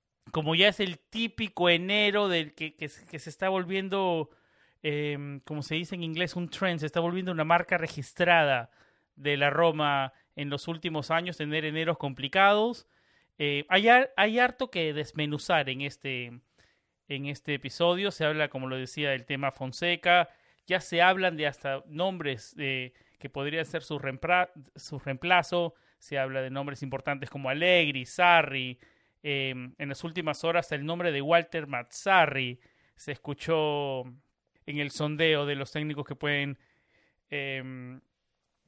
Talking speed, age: 155 wpm, 40-59